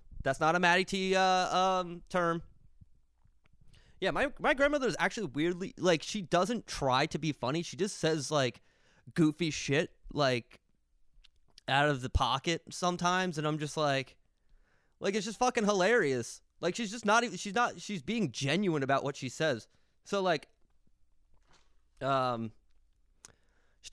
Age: 20-39